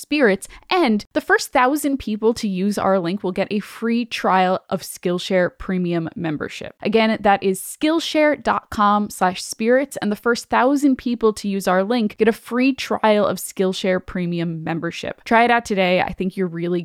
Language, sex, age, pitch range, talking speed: English, female, 10-29, 185-225 Hz, 175 wpm